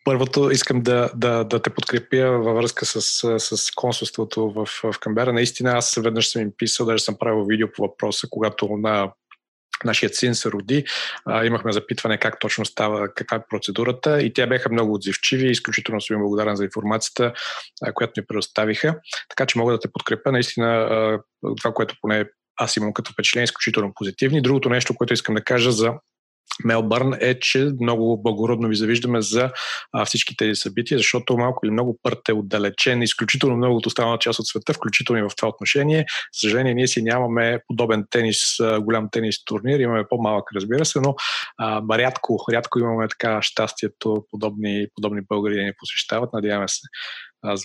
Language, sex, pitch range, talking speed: Bulgarian, male, 110-125 Hz, 175 wpm